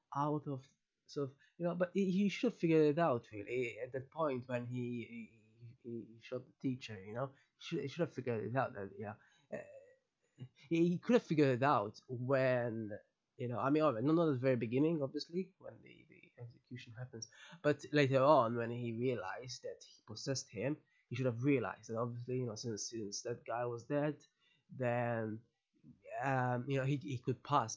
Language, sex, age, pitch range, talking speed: English, male, 20-39, 120-155 Hz, 200 wpm